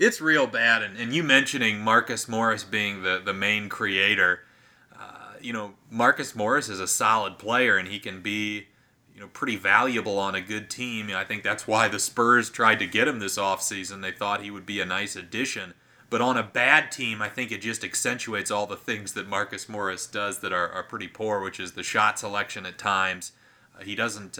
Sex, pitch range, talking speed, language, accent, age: male, 95-115 Hz, 215 wpm, English, American, 30-49